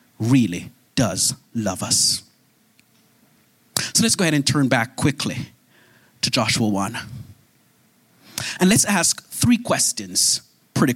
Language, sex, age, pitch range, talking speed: English, male, 30-49, 120-160 Hz, 115 wpm